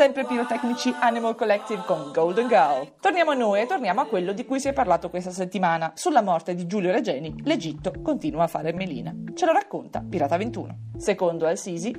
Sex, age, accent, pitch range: female, 30-49, native, 170-255 Hz